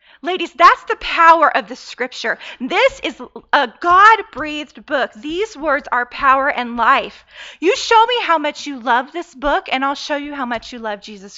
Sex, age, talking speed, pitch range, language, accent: female, 30-49, 190 wpm, 255-330 Hz, English, American